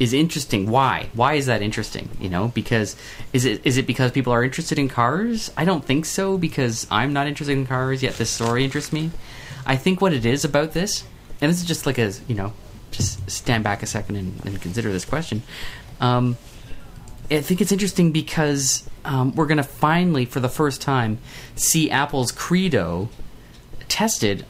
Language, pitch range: English, 110-140 Hz